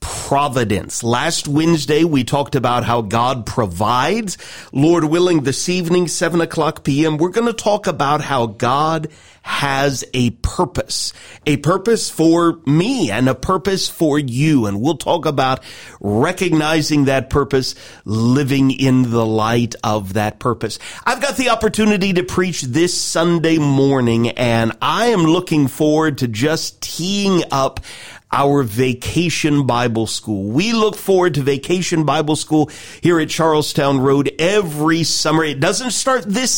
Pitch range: 130-180 Hz